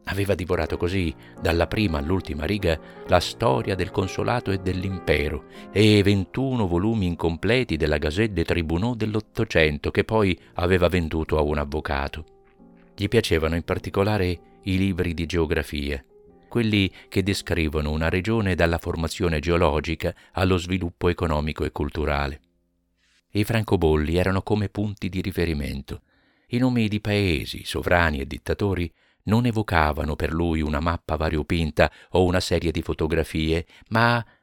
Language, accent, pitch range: Italian, native, 80-100 Hz